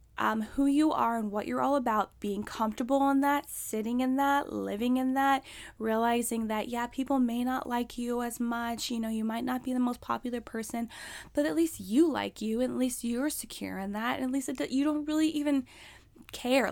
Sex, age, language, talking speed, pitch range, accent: female, 10-29, English, 210 wpm, 215-270 Hz, American